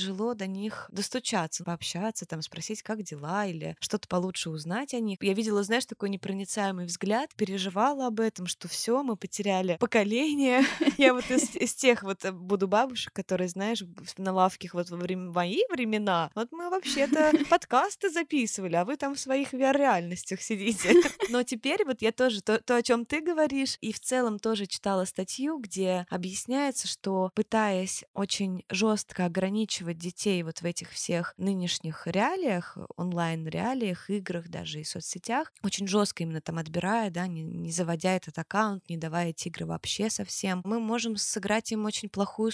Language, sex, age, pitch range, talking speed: Russian, female, 20-39, 180-225 Hz, 165 wpm